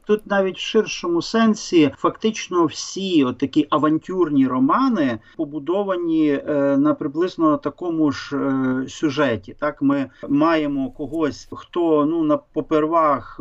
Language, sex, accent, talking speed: Ukrainian, male, native, 115 wpm